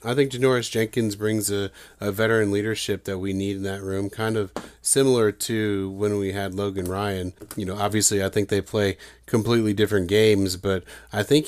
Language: English